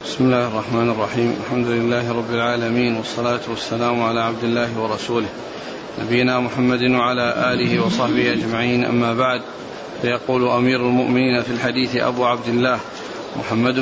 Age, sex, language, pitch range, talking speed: 40-59, male, Arabic, 125-135 Hz, 135 wpm